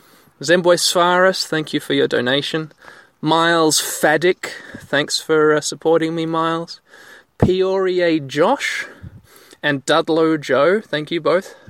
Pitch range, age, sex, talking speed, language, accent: 155-190 Hz, 20-39, male, 120 wpm, English, Australian